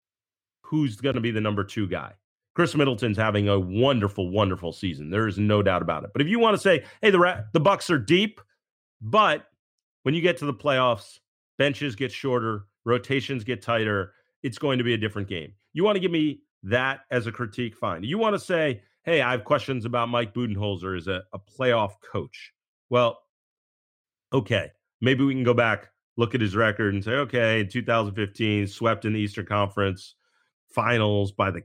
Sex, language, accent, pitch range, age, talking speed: male, English, American, 105-145 Hz, 30-49, 195 wpm